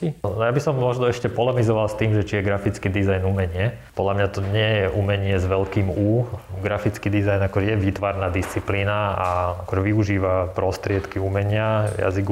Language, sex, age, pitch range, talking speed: Slovak, male, 20-39, 95-105 Hz, 170 wpm